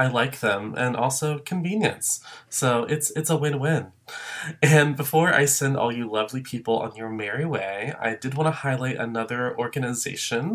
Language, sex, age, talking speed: English, male, 20-39, 170 wpm